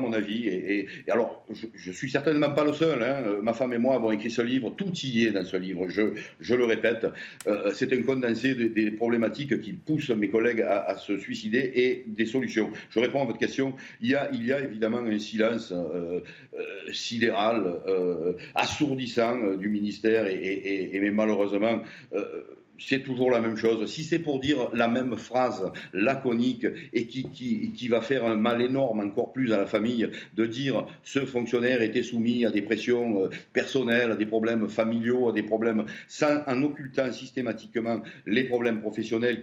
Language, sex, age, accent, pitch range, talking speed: French, male, 60-79, French, 110-130 Hz, 200 wpm